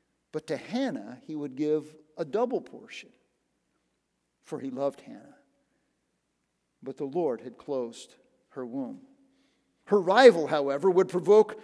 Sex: male